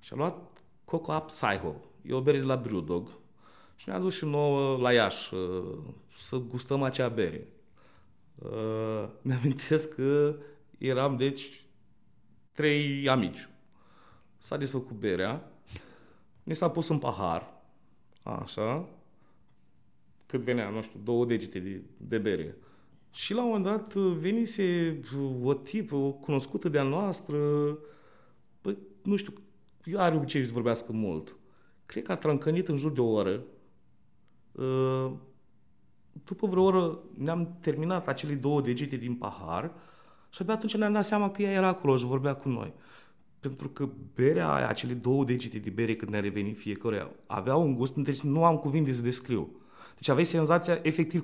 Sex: male